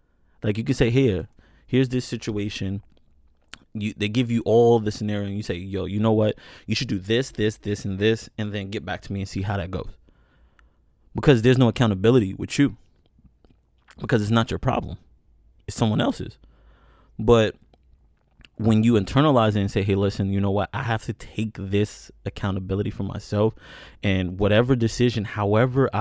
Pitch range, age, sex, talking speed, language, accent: 95-115 Hz, 20-39, male, 180 wpm, English, American